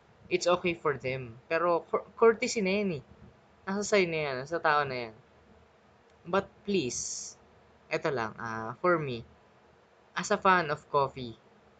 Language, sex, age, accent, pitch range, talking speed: Filipino, female, 20-39, native, 135-180 Hz, 140 wpm